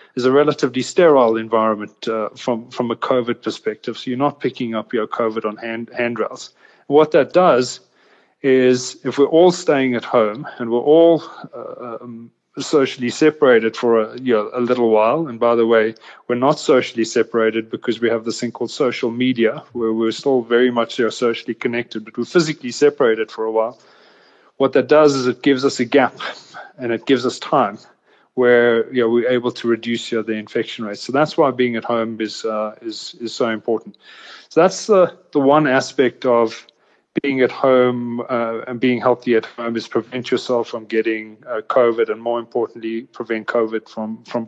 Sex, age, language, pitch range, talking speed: male, 30-49, English, 115-130 Hz, 195 wpm